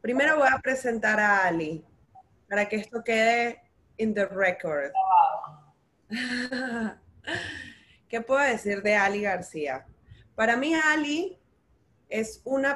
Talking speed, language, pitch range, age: 115 wpm, Spanish, 205-260 Hz, 20-39